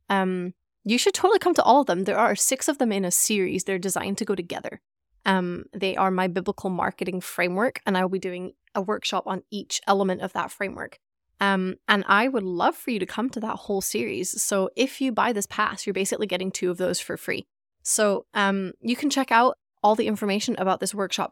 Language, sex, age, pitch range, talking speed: English, female, 20-39, 185-225 Hz, 230 wpm